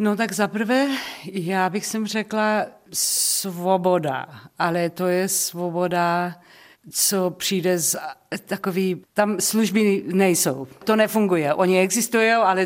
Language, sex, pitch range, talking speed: Czech, female, 160-205 Hz, 110 wpm